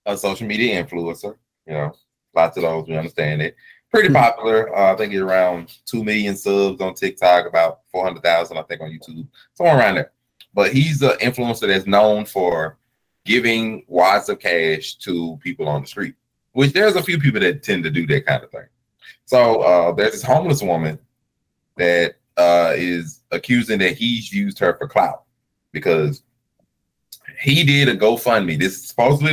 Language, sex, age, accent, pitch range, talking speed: English, male, 20-39, American, 85-130 Hz, 175 wpm